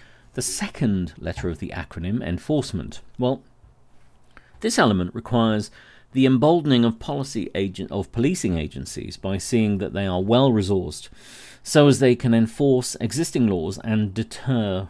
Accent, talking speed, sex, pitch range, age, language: British, 140 wpm, male, 95-125 Hz, 40-59, English